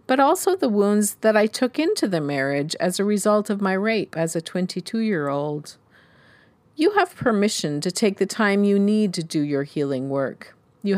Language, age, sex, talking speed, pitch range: English, 40-59, female, 185 wpm, 160-215 Hz